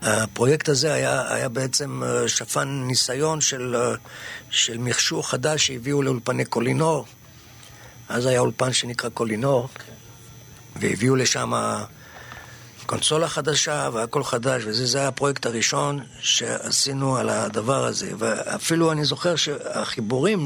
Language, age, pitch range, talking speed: Hebrew, 50-69, 120-150 Hz, 110 wpm